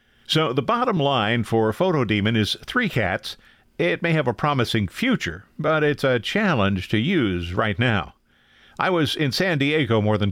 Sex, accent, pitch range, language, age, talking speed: male, American, 105-140 Hz, English, 50-69, 175 wpm